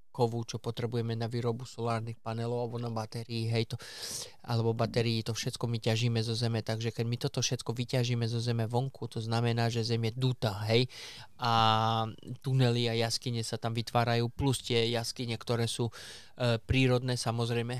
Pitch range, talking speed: 115-125 Hz, 170 wpm